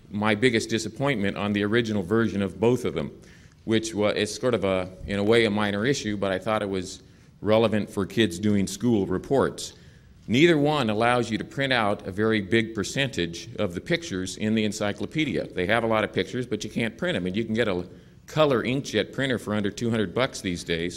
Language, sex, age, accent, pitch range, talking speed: English, male, 40-59, American, 100-120 Hz, 215 wpm